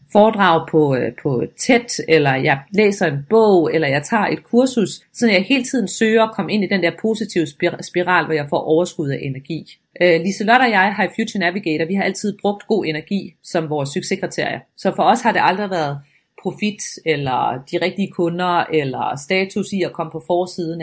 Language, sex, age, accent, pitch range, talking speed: Danish, female, 30-49, native, 170-215 Hz, 200 wpm